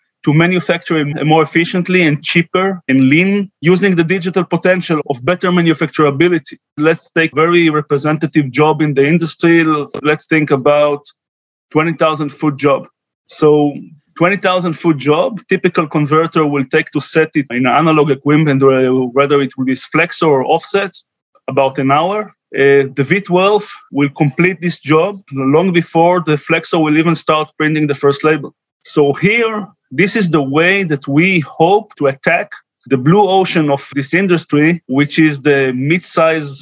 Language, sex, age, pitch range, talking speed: English, male, 30-49, 145-175 Hz, 150 wpm